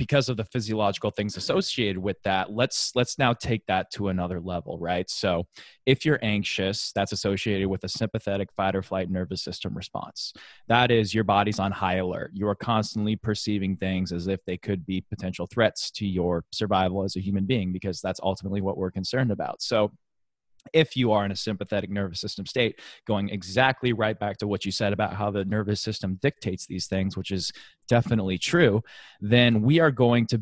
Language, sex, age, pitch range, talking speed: English, male, 20-39, 100-130 Hz, 195 wpm